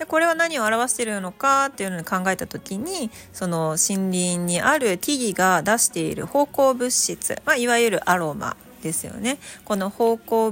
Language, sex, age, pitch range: Japanese, female, 40-59, 180-255 Hz